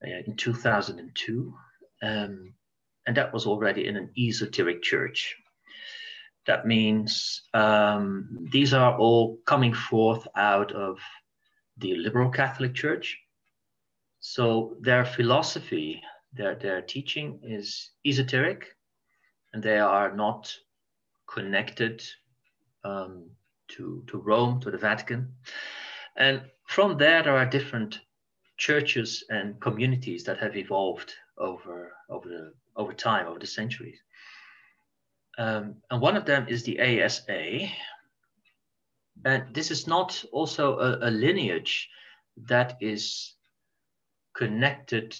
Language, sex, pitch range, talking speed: English, male, 110-140 Hz, 110 wpm